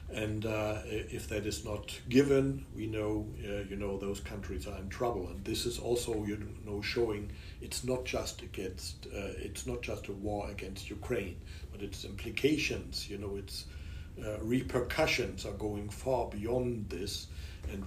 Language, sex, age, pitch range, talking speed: English, male, 60-79, 90-115 Hz, 170 wpm